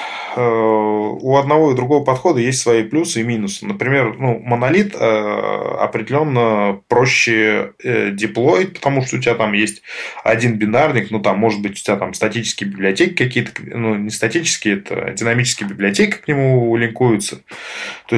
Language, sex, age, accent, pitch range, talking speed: Russian, male, 20-39, native, 105-125 Hz, 145 wpm